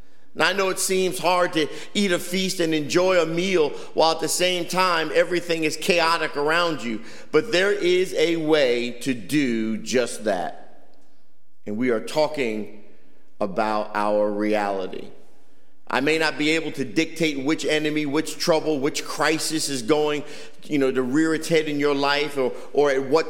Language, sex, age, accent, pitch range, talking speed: English, male, 50-69, American, 150-190 Hz, 175 wpm